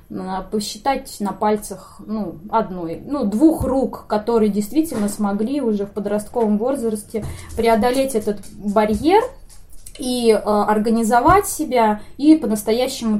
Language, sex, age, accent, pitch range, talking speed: Russian, female, 20-39, native, 205-260 Hz, 110 wpm